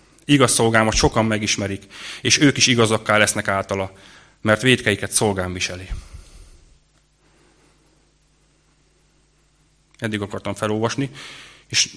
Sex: male